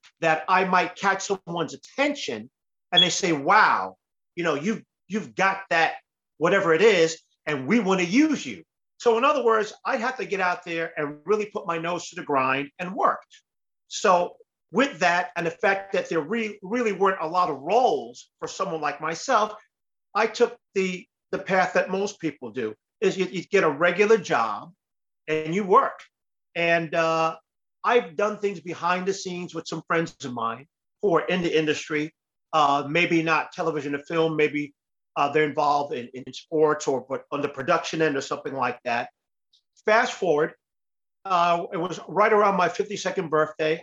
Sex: male